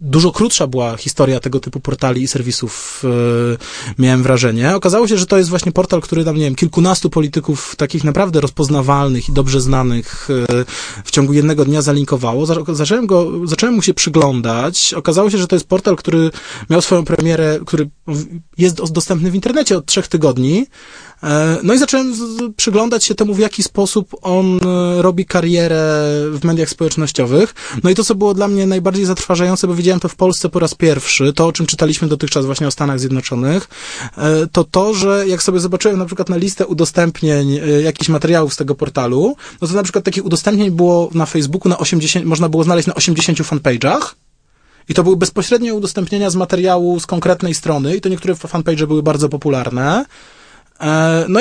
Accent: native